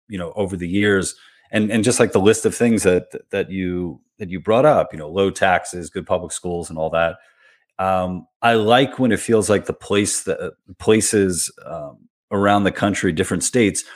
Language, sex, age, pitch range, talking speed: English, male, 30-49, 85-110 Hz, 205 wpm